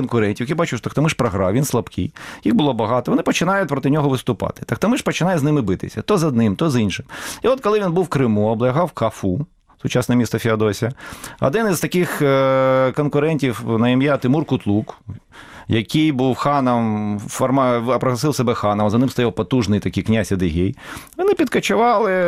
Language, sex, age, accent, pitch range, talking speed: Ukrainian, male, 30-49, native, 110-150 Hz, 165 wpm